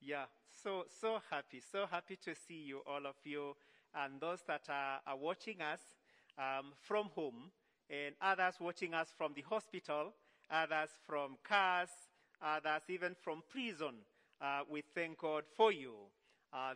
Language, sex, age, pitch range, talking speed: English, male, 40-59, 155-200 Hz, 155 wpm